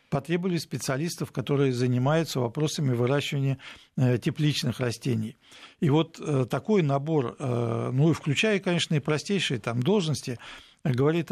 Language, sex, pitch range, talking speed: Russian, male, 125-160 Hz, 110 wpm